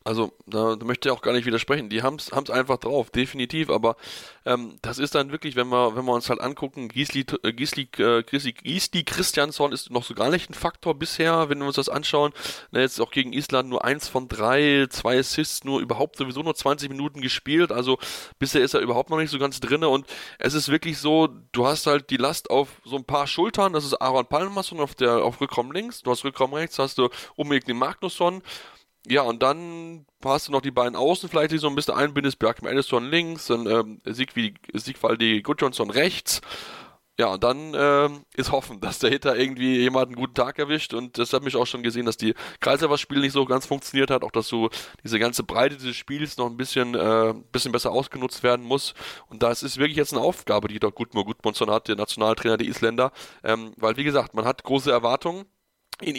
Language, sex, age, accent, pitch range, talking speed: German, male, 10-29, German, 120-145 Hz, 210 wpm